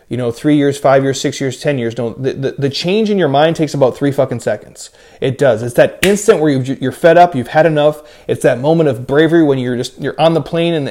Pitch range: 135-160 Hz